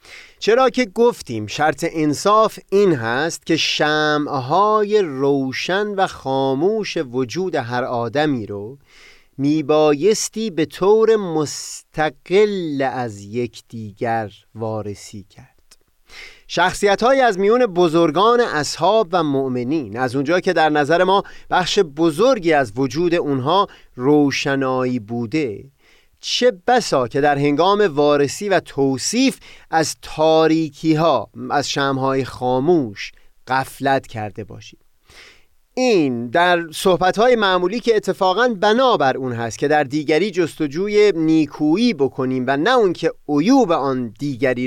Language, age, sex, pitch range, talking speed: Persian, 30-49, male, 130-190 Hz, 115 wpm